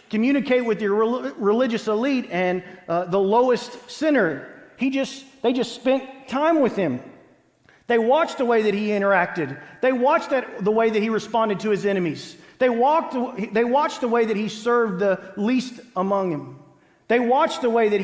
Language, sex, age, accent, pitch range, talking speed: English, male, 40-59, American, 205-245 Hz, 180 wpm